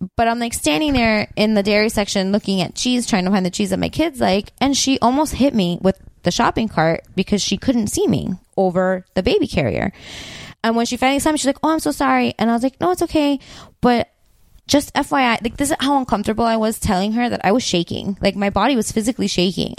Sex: female